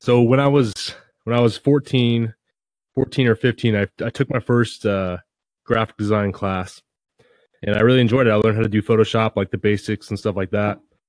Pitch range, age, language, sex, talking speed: 105-125 Hz, 20-39, English, male, 205 wpm